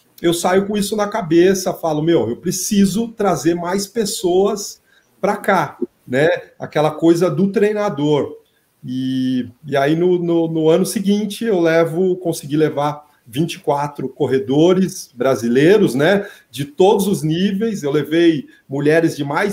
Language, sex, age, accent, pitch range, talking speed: Portuguese, male, 40-59, Brazilian, 140-190 Hz, 140 wpm